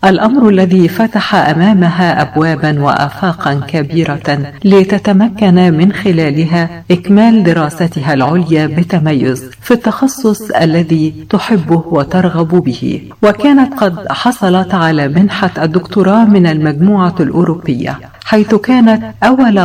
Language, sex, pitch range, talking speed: Arabic, female, 155-195 Hz, 100 wpm